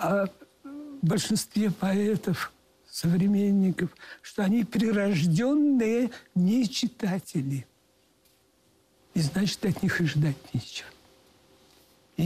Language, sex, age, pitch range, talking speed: Russian, male, 60-79, 180-240 Hz, 85 wpm